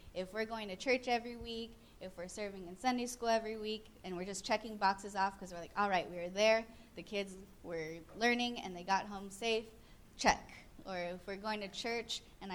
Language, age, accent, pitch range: English, 20-39, American, 180-225 Hz